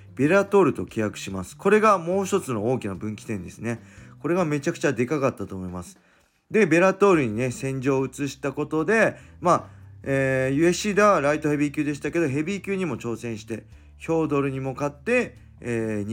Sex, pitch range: male, 105-155 Hz